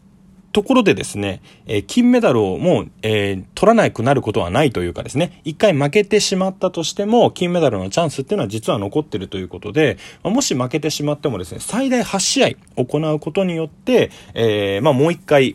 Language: Japanese